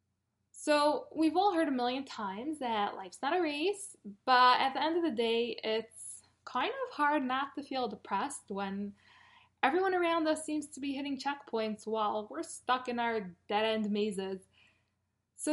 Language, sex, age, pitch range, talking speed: English, female, 10-29, 205-280 Hz, 170 wpm